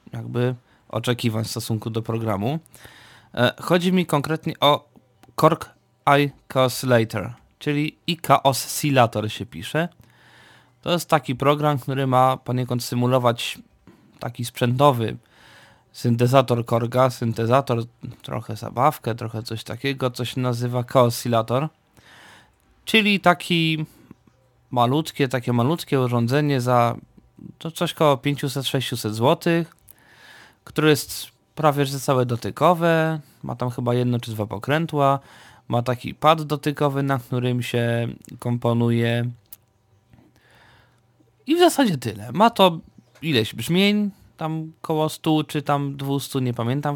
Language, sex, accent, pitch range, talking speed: Polish, male, native, 115-145 Hz, 110 wpm